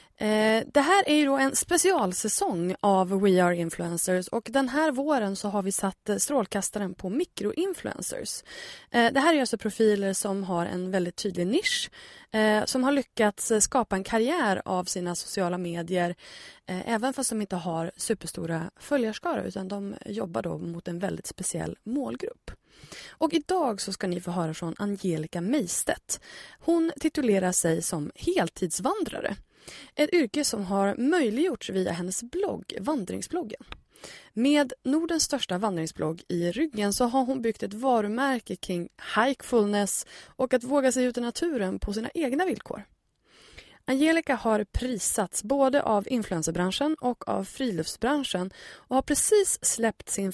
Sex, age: female, 20-39